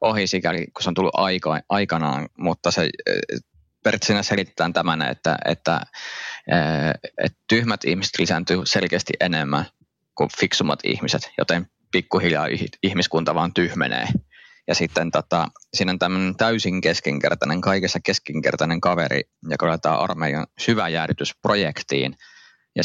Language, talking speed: Finnish, 115 wpm